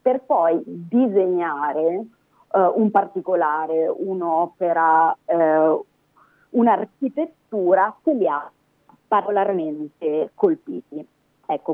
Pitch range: 155-210 Hz